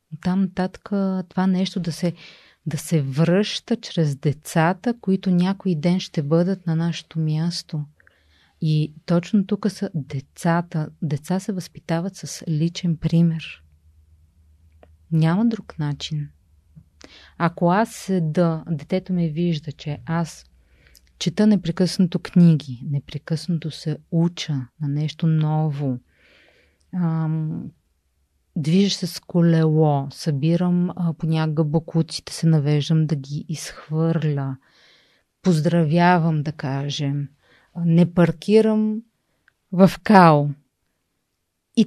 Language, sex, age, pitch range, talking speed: Bulgarian, female, 30-49, 145-180 Hz, 100 wpm